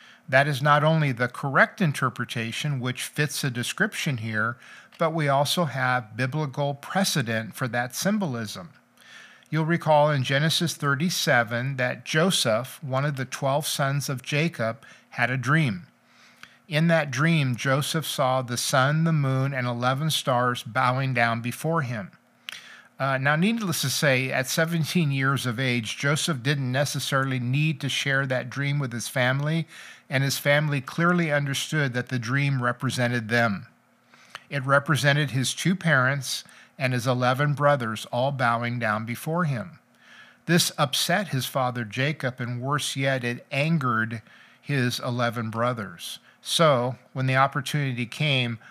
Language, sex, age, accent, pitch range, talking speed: English, male, 50-69, American, 125-150 Hz, 145 wpm